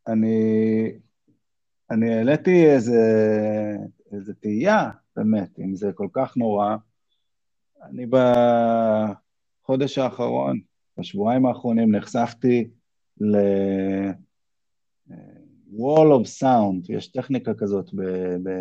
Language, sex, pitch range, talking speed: Hebrew, male, 100-140 Hz, 85 wpm